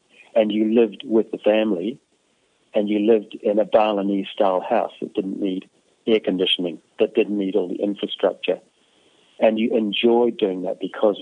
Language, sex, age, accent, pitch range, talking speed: English, male, 40-59, British, 95-110 Hz, 160 wpm